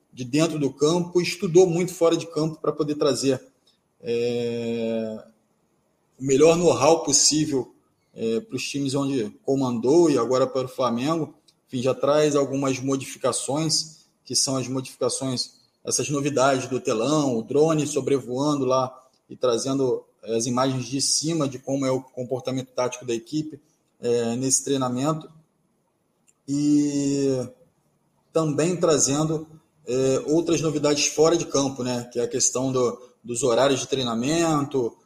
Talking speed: 140 wpm